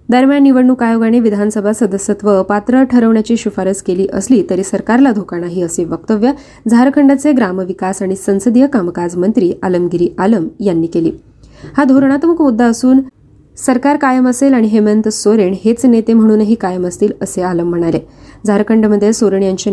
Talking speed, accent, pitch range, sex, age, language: 135 wpm, native, 190-235 Hz, female, 20-39, Marathi